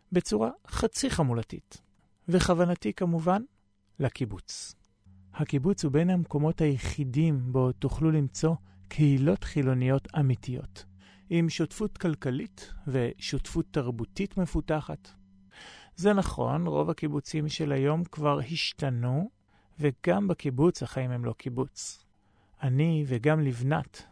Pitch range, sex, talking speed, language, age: 125-165 Hz, male, 100 wpm, Hebrew, 40-59